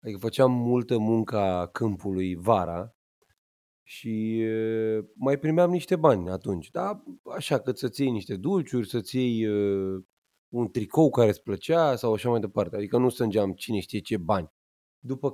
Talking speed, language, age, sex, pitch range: 145 wpm, Romanian, 30-49, male, 105-145 Hz